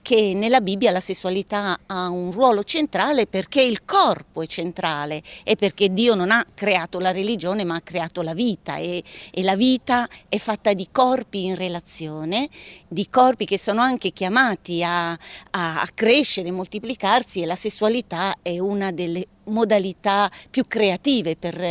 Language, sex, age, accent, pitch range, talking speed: Italian, female, 40-59, native, 180-220 Hz, 160 wpm